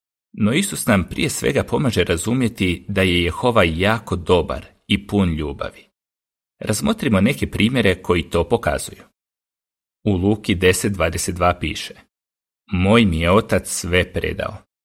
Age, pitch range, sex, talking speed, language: 40-59, 85-105 Hz, male, 125 wpm, Croatian